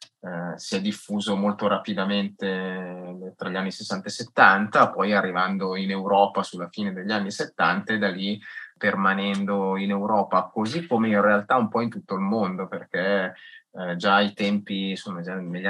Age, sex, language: 20-39, male, Italian